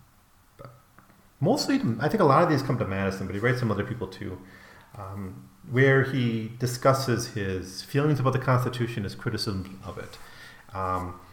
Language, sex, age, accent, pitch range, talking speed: English, male, 40-59, American, 95-125 Hz, 165 wpm